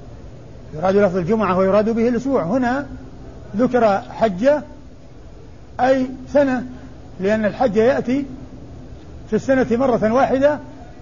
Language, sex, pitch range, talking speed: Arabic, male, 190-240 Hz, 100 wpm